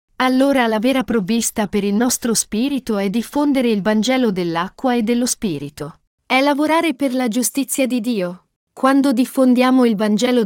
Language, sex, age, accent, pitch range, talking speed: Italian, female, 40-59, native, 205-275 Hz, 155 wpm